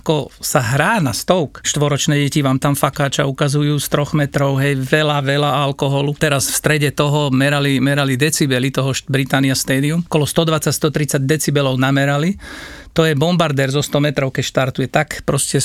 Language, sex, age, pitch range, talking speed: Slovak, male, 50-69, 135-160 Hz, 160 wpm